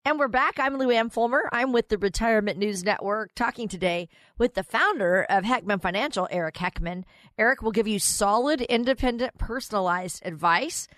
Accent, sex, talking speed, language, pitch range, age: American, female, 170 wpm, English, 180-245 Hz, 40-59